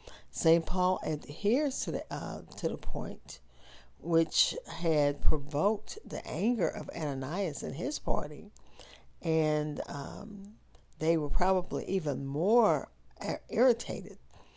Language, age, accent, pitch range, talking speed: English, 50-69, American, 135-165 Hz, 110 wpm